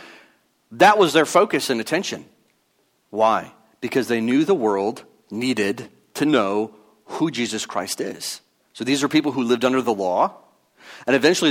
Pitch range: 115-155 Hz